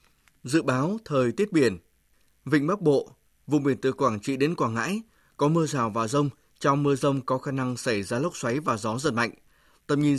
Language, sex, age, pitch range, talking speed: Vietnamese, male, 20-39, 130-155 Hz, 220 wpm